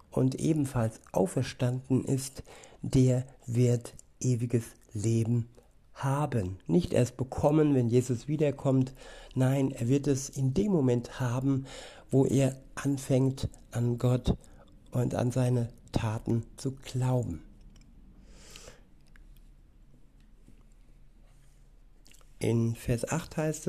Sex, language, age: male, German, 60-79